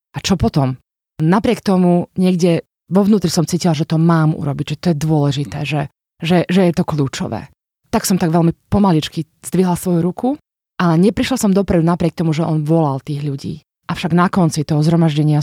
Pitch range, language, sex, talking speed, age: 160-190 Hz, Slovak, female, 185 wpm, 20-39